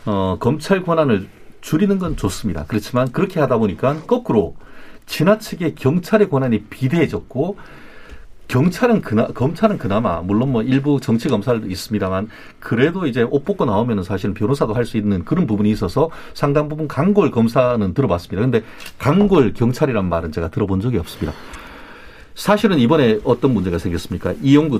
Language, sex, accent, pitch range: Korean, male, native, 105-155 Hz